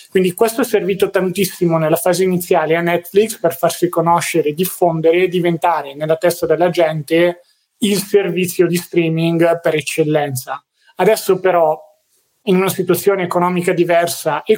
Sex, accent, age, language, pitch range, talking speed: male, native, 30-49, Italian, 160-190 Hz, 140 wpm